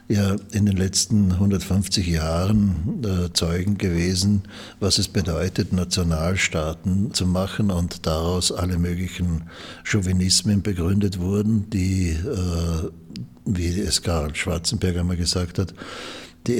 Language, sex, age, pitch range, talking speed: German, male, 60-79, 85-100 Hz, 115 wpm